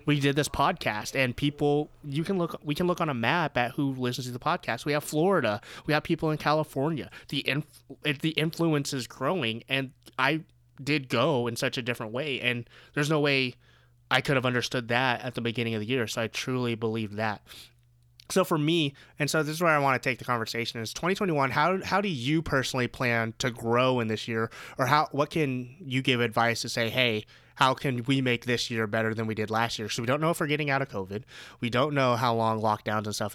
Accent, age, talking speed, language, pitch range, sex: American, 20-39, 235 wpm, English, 110-140 Hz, male